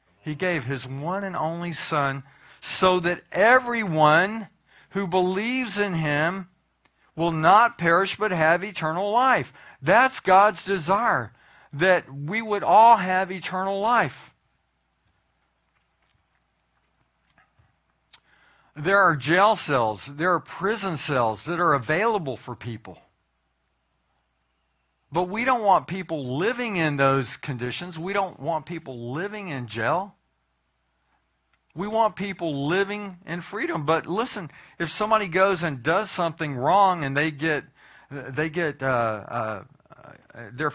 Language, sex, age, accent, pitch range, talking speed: English, male, 50-69, American, 145-195 Hz, 125 wpm